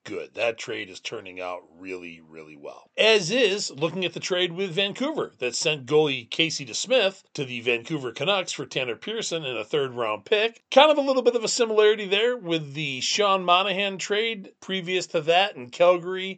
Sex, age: male, 40-59